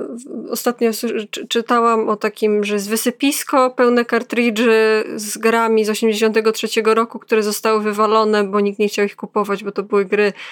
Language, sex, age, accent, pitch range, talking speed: Polish, female, 20-39, native, 215-255 Hz, 155 wpm